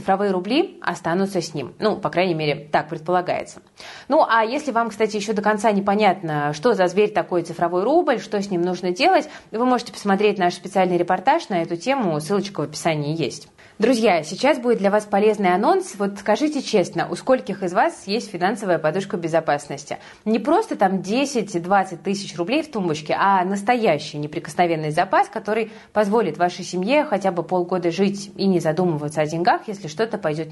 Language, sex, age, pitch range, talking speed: Russian, female, 20-39, 165-215 Hz, 175 wpm